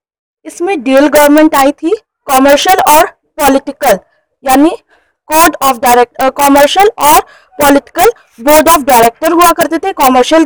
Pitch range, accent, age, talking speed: 275-340 Hz, native, 20-39, 125 wpm